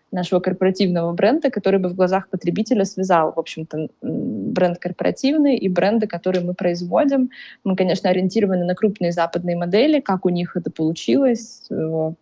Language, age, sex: Russian, 20-39, female